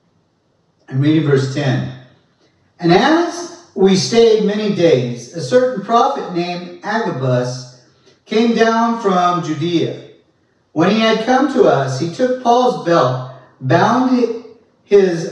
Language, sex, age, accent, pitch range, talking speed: English, male, 50-69, American, 165-215 Hz, 125 wpm